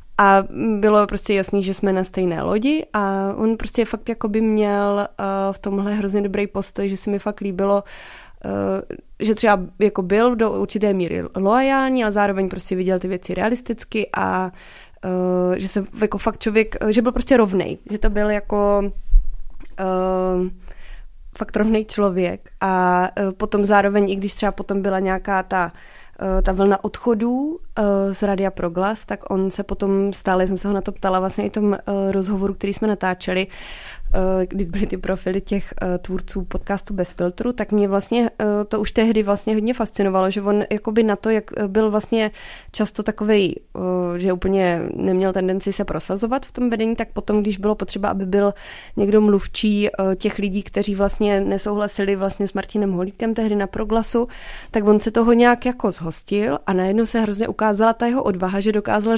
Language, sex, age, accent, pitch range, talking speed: Czech, female, 20-39, native, 195-215 Hz, 175 wpm